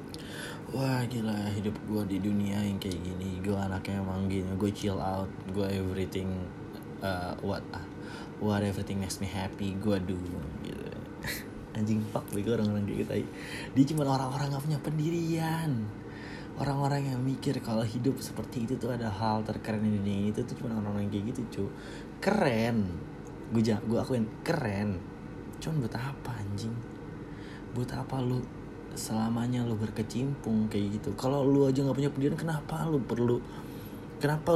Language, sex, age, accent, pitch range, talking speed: Indonesian, male, 20-39, native, 100-130 Hz, 155 wpm